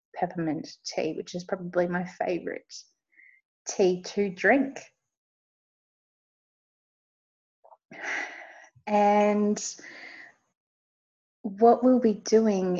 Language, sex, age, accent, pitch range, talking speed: English, female, 30-49, Australian, 185-235 Hz, 70 wpm